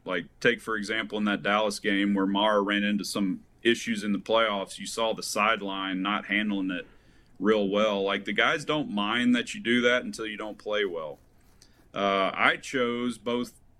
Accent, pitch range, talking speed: American, 100-115 Hz, 190 wpm